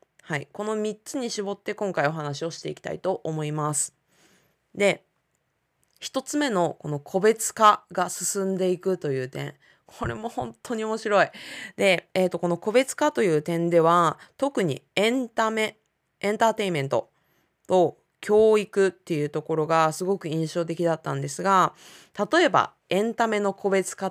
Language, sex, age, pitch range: Japanese, female, 20-39, 140-195 Hz